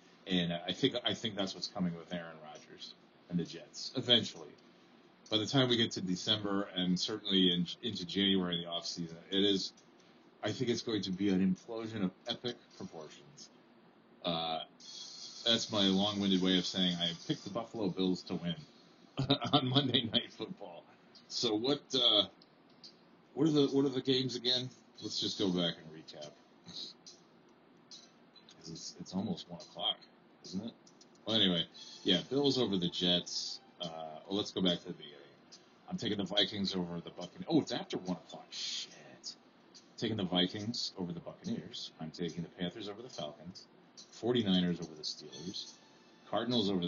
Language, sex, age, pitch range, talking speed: English, male, 30-49, 85-110 Hz, 170 wpm